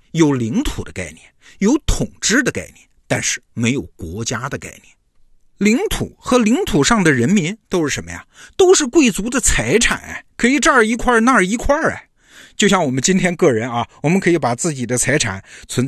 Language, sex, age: Chinese, male, 50-69